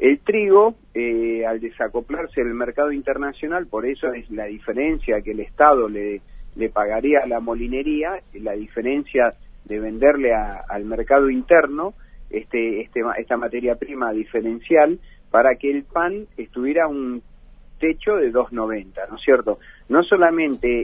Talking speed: 145 wpm